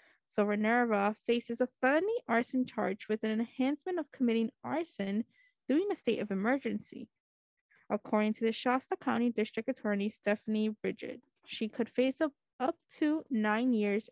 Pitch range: 215-270 Hz